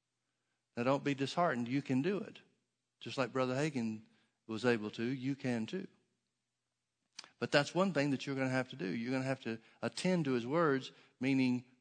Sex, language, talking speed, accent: male, English, 200 wpm, American